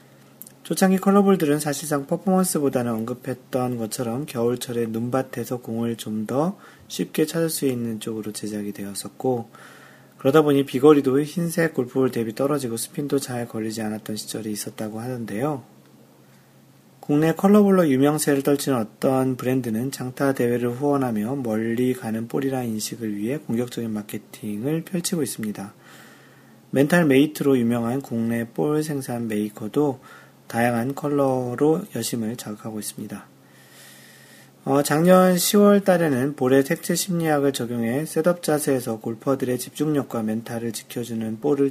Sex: male